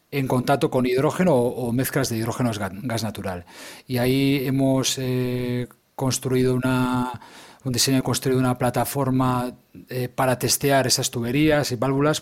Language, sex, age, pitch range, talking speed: Spanish, male, 30-49, 115-140 Hz, 140 wpm